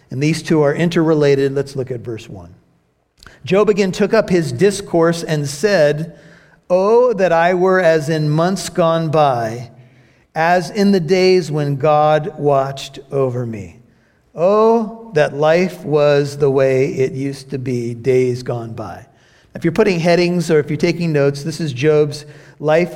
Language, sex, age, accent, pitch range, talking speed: English, male, 50-69, American, 140-185 Hz, 160 wpm